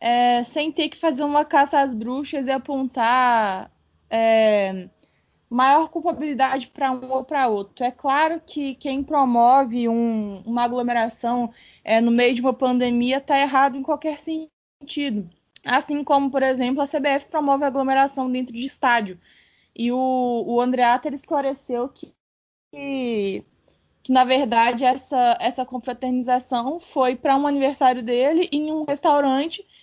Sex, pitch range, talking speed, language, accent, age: female, 235-280 Hz, 145 wpm, Portuguese, Brazilian, 20-39